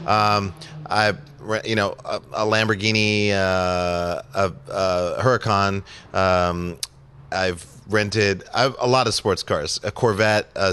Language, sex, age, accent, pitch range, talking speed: English, male, 30-49, American, 90-110 Hz, 125 wpm